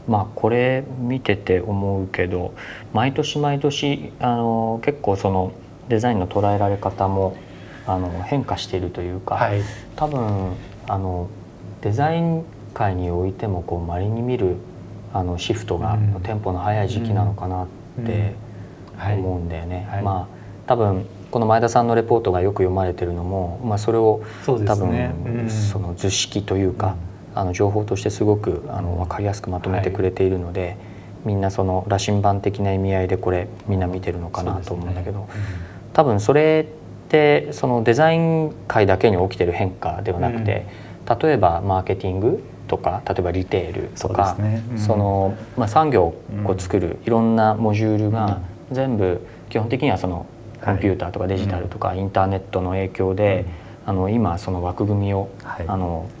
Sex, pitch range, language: male, 95-115 Hz, English